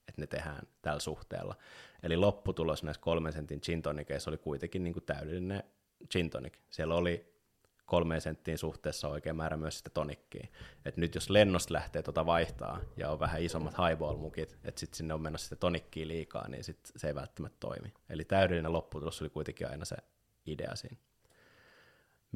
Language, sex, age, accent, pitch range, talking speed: Finnish, male, 20-39, native, 80-95 Hz, 160 wpm